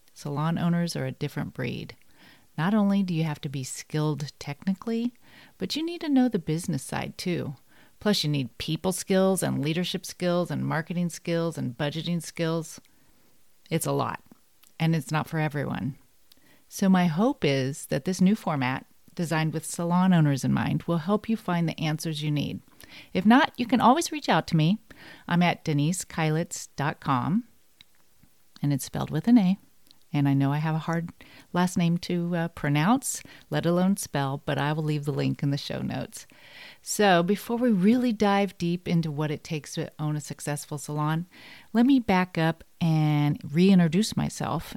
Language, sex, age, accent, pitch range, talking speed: English, female, 40-59, American, 150-195 Hz, 180 wpm